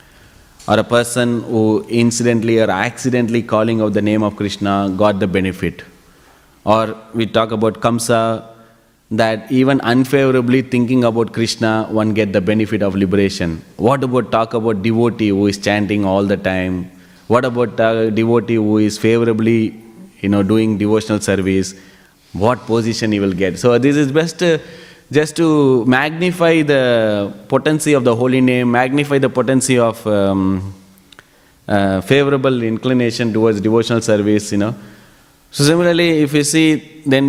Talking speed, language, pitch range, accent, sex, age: 150 wpm, English, 110-135 Hz, Indian, male, 30-49